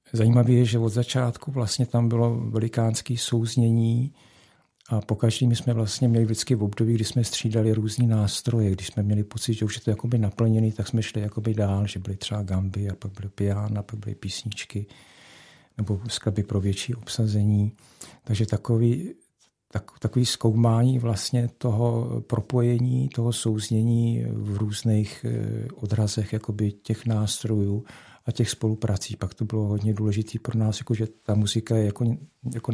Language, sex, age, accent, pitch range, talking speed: Czech, male, 50-69, native, 105-120 Hz, 160 wpm